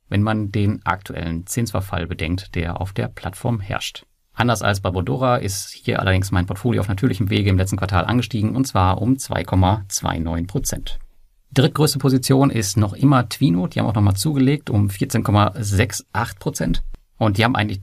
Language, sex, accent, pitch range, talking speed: German, male, German, 95-120 Hz, 160 wpm